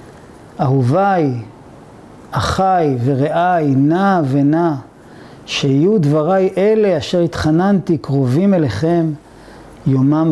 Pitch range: 140-185 Hz